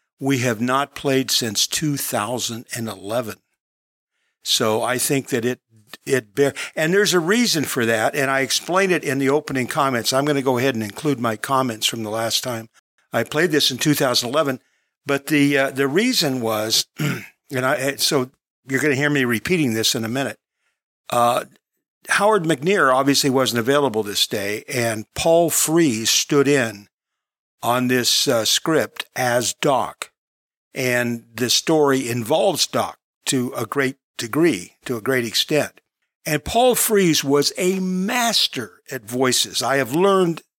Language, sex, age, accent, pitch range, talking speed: English, male, 50-69, American, 120-150 Hz, 160 wpm